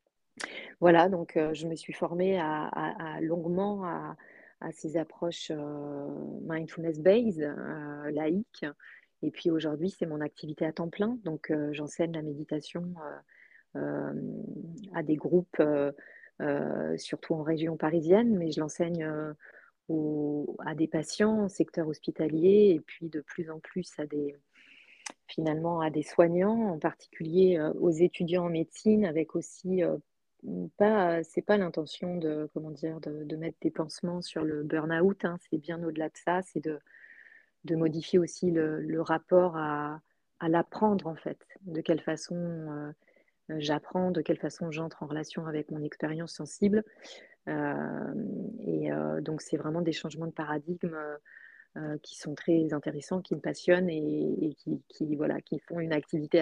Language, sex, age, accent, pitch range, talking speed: French, female, 30-49, French, 155-175 Hz, 155 wpm